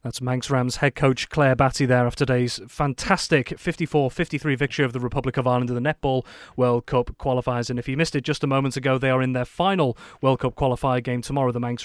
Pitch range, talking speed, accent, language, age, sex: 130-160 Hz, 230 wpm, British, English, 30-49, male